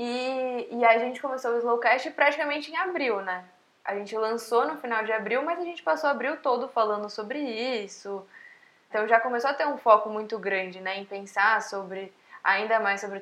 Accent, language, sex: Brazilian, Portuguese, female